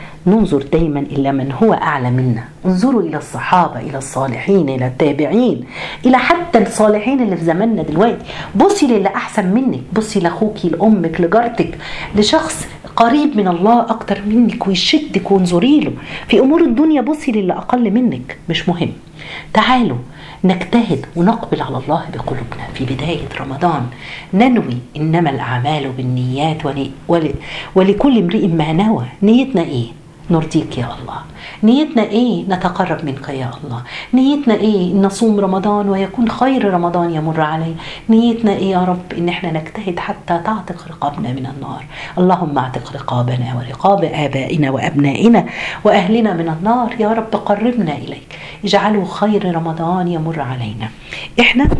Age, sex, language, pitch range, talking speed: 50-69, female, Arabic, 150-220 Hz, 135 wpm